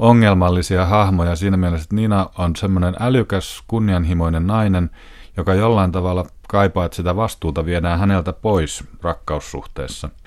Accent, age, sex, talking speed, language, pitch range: native, 30-49, male, 130 wpm, Finnish, 85-100 Hz